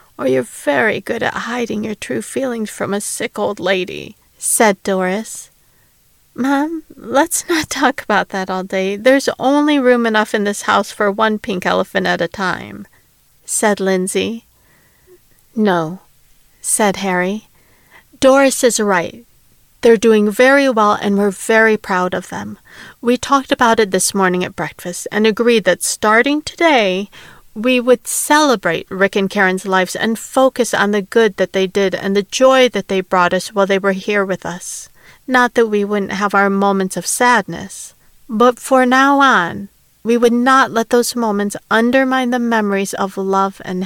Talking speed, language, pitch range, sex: 165 wpm, English, 190-245 Hz, female